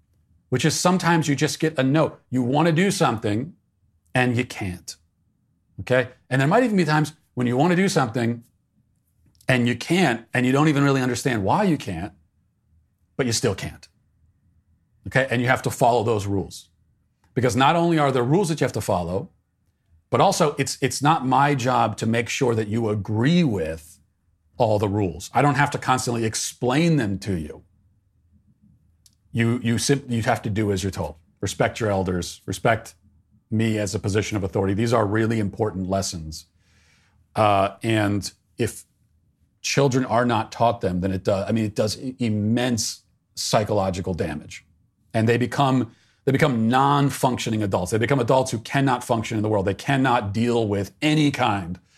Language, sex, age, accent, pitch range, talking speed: English, male, 40-59, American, 100-130 Hz, 180 wpm